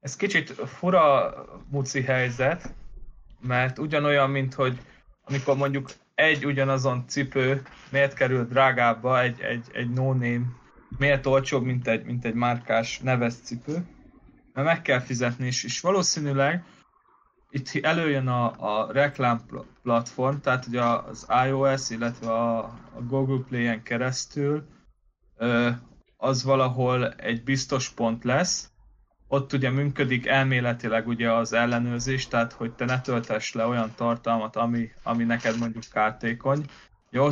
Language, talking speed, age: Hungarian, 125 wpm, 20-39